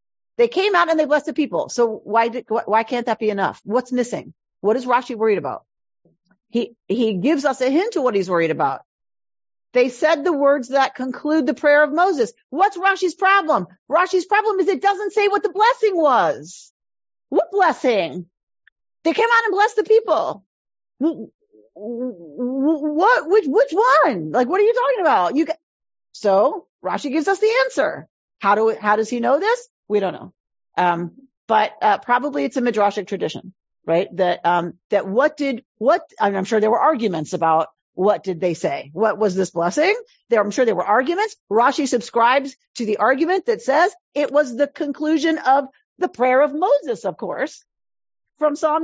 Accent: American